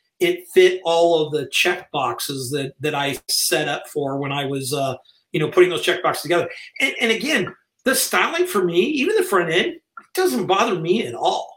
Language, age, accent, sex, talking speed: English, 40-59, American, male, 195 wpm